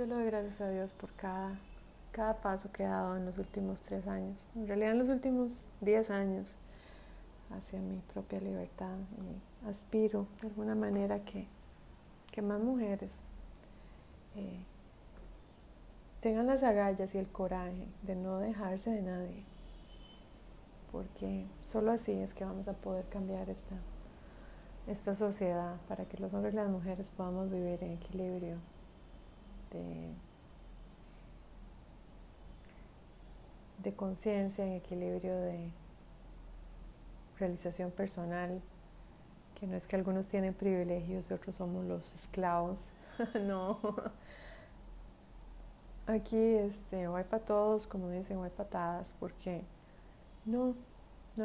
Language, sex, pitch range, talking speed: Spanish, female, 180-210 Hz, 125 wpm